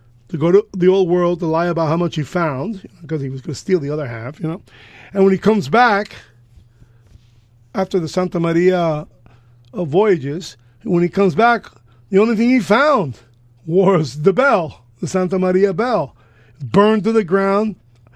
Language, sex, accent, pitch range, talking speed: English, male, American, 125-185 Hz, 180 wpm